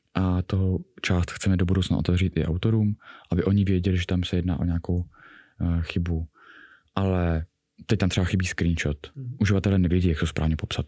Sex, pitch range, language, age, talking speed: male, 90-105 Hz, Czech, 20-39, 170 wpm